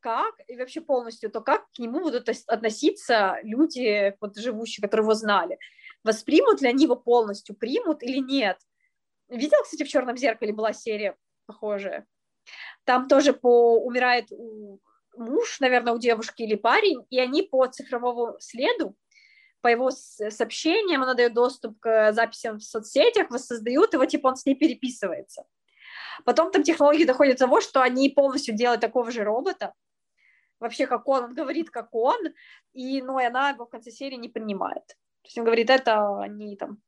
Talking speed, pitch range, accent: 170 wpm, 220-275 Hz, native